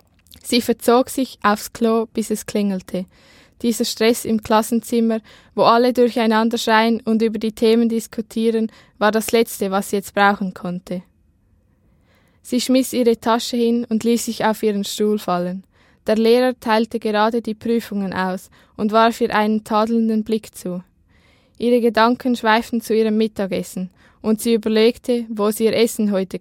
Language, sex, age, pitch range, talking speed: German, female, 10-29, 210-235 Hz, 155 wpm